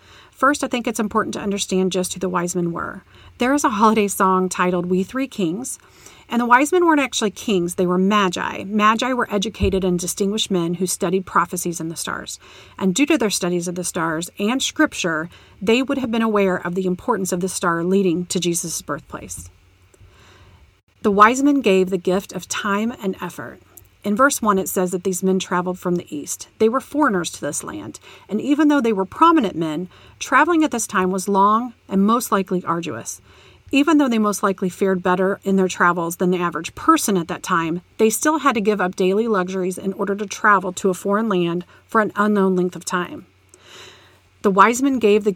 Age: 40-59